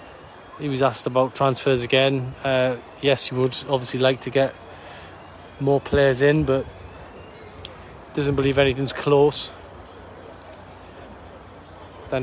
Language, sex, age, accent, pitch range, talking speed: English, male, 20-39, British, 115-140 Hz, 115 wpm